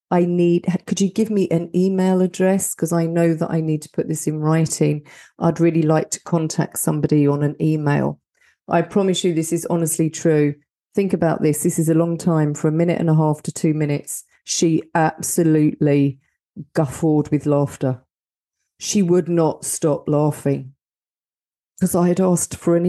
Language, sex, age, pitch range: English, female, 40-59, 160-205 Hz